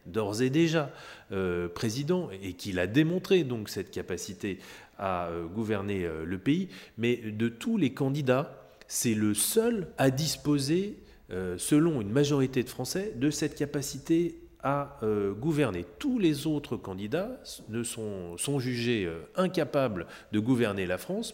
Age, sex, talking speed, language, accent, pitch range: 30-49, male, 150 wpm, French, French, 105-150 Hz